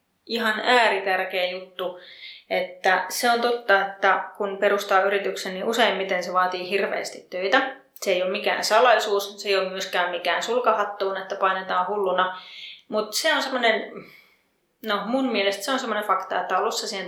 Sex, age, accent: female, 30-49, native